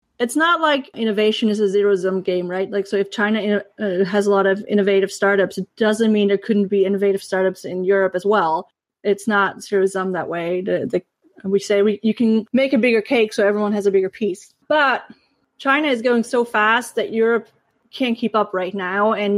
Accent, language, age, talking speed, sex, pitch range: American, English, 30-49, 215 wpm, female, 195-225 Hz